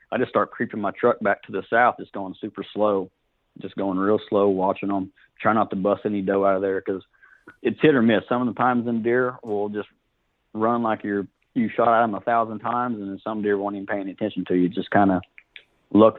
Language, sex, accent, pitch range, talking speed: English, male, American, 95-115 Hz, 245 wpm